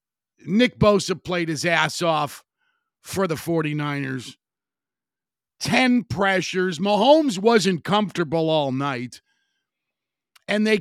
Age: 50-69